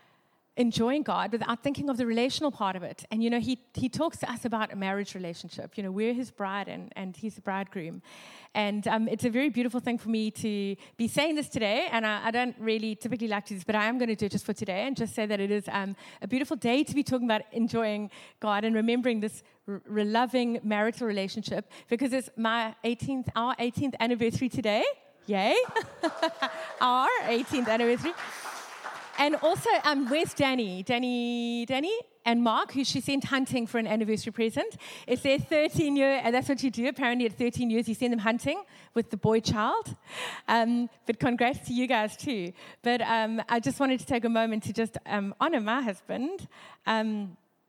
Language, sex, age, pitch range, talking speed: English, female, 30-49, 215-255 Hz, 205 wpm